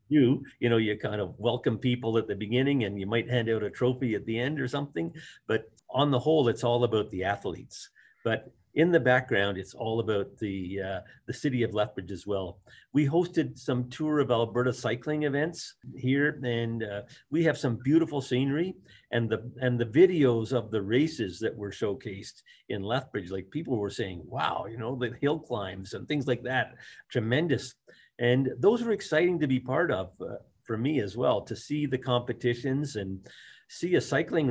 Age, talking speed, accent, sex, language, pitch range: 50-69, 195 wpm, American, male, English, 110-140 Hz